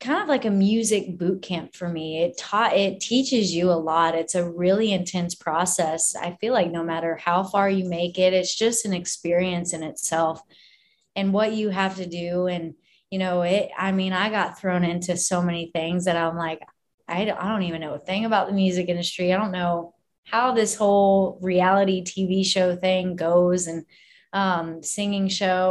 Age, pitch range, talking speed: 20-39, 170-195 Hz, 200 wpm